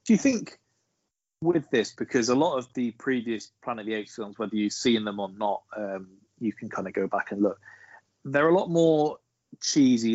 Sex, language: male, English